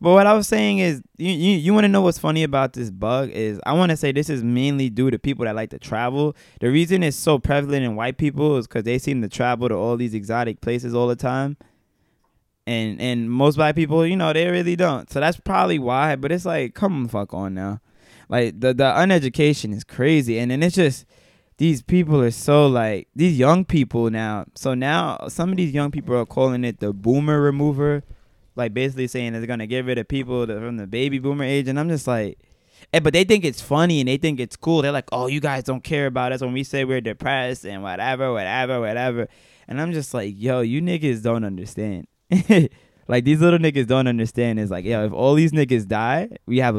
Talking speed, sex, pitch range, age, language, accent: 235 wpm, male, 115-150 Hz, 20-39, English, American